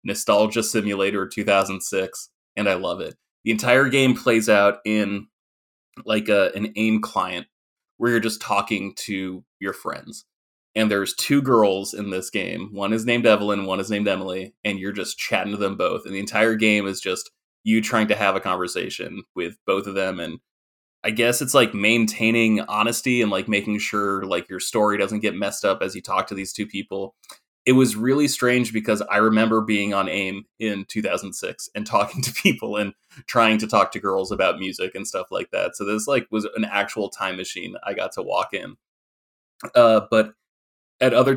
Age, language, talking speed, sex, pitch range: 20-39, English, 195 wpm, male, 100-115 Hz